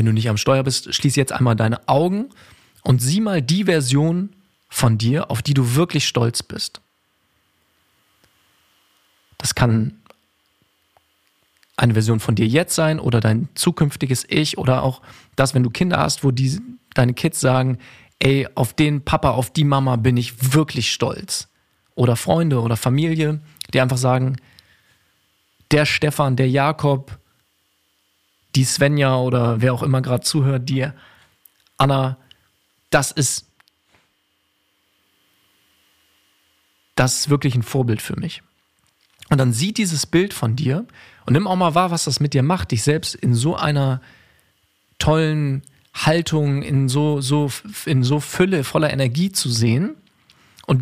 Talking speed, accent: 145 wpm, German